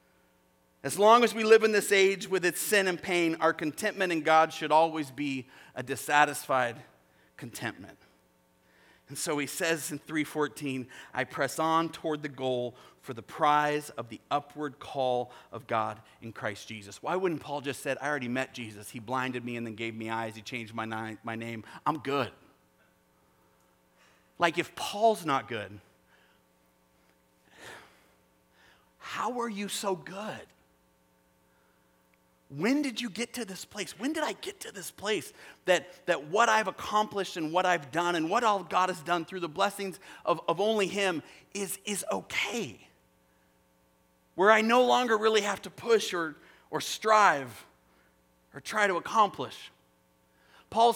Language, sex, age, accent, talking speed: English, male, 40-59, American, 160 wpm